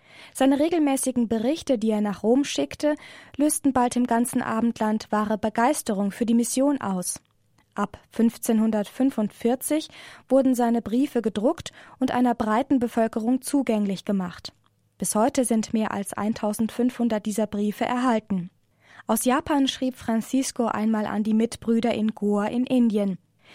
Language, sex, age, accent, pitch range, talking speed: German, female, 20-39, German, 215-260 Hz, 135 wpm